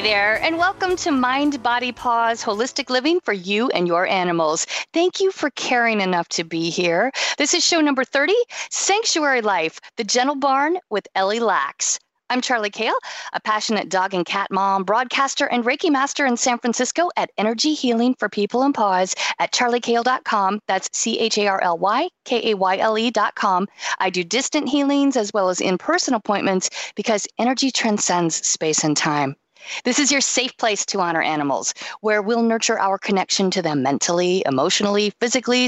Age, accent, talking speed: 40-59, American, 160 wpm